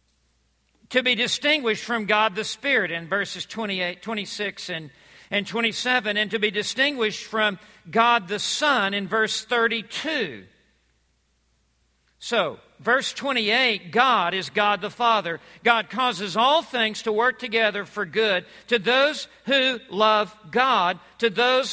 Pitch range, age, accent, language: 175-230 Hz, 50-69, American, English